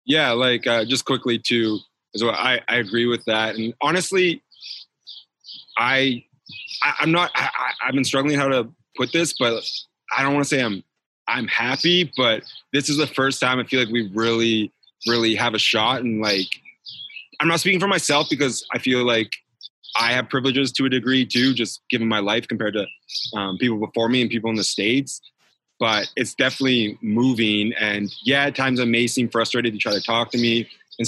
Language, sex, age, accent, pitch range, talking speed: English, male, 20-39, American, 110-135 Hz, 195 wpm